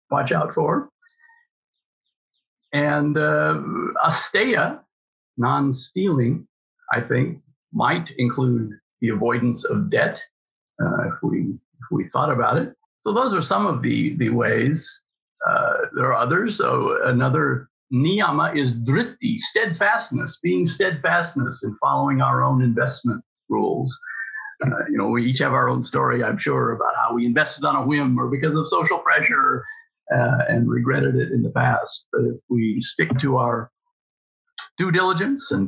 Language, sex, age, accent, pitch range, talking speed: English, male, 50-69, American, 125-205 Hz, 150 wpm